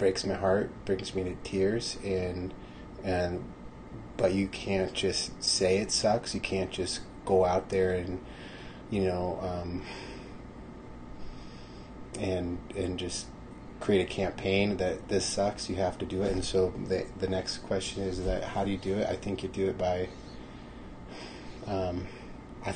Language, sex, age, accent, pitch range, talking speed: English, male, 30-49, American, 90-105 Hz, 160 wpm